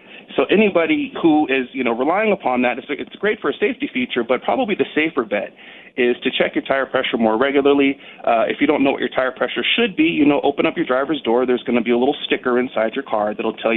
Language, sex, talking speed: English, male, 255 wpm